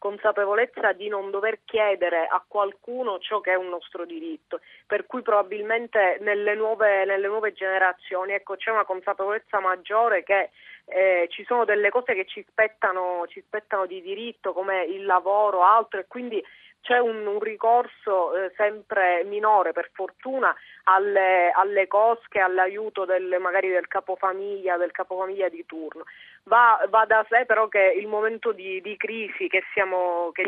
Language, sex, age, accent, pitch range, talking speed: Italian, female, 30-49, native, 185-225 Hz, 160 wpm